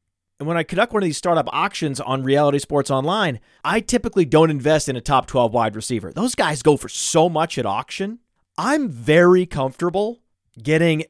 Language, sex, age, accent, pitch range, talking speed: English, male, 30-49, American, 125-175 Hz, 190 wpm